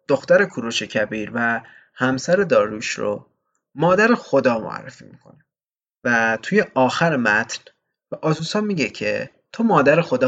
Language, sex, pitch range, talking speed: Persian, male, 120-165 Hz, 130 wpm